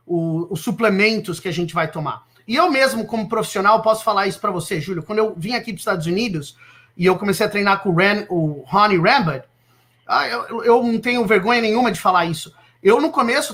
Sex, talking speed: male, 215 wpm